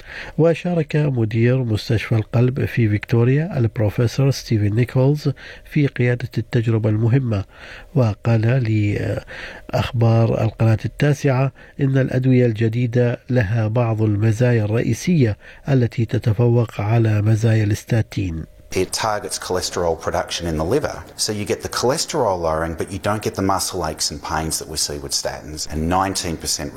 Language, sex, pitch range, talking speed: Arabic, male, 105-125 Hz, 130 wpm